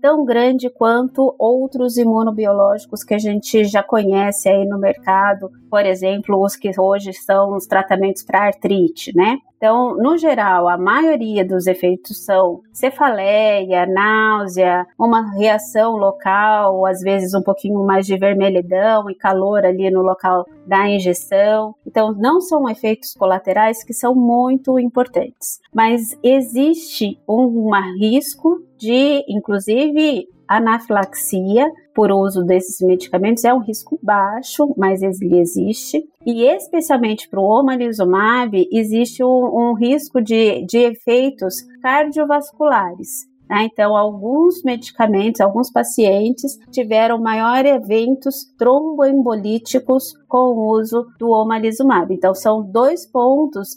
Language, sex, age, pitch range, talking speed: Portuguese, female, 30-49, 195-255 Hz, 125 wpm